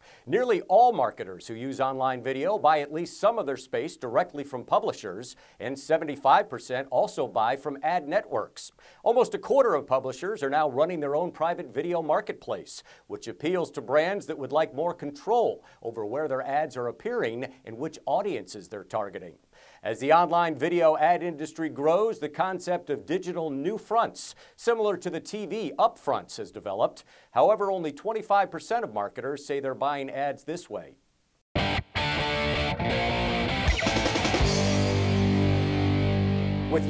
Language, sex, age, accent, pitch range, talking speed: English, male, 50-69, American, 135-200 Hz, 145 wpm